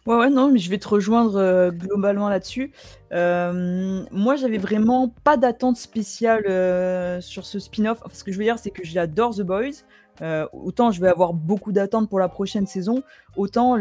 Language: French